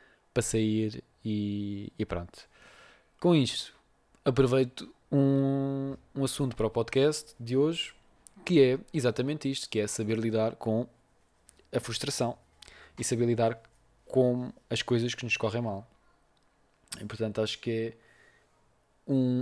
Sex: male